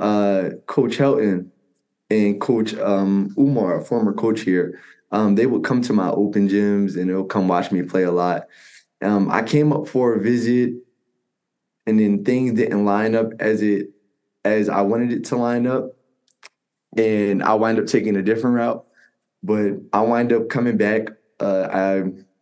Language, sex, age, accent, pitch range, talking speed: English, male, 20-39, American, 95-110 Hz, 175 wpm